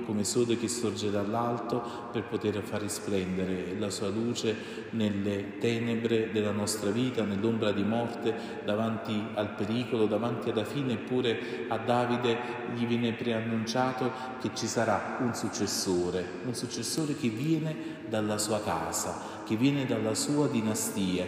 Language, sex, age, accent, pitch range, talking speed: Italian, male, 40-59, native, 105-125 Hz, 140 wpm